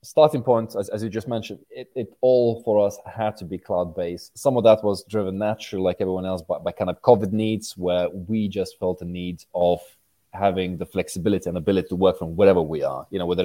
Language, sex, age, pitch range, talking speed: English, male, 20-39, 90-110 Hz, 230 wpm